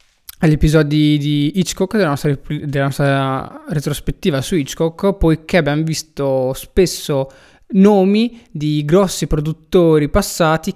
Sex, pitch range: male, 140-180 Hz